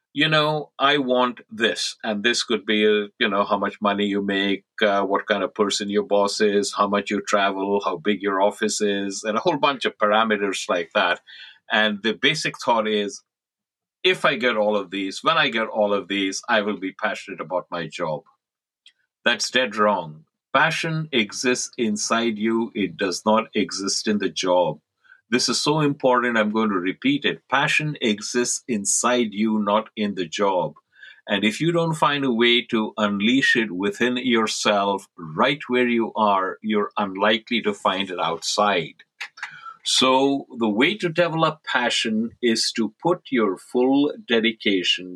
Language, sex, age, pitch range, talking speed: English, male, 50-69, 100-130 Hz, 175 wpm